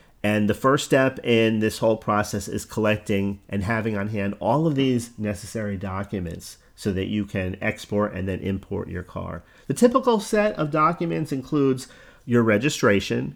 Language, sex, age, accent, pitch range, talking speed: English, male, 40-59, American, 105-130 Hz, 165 wpm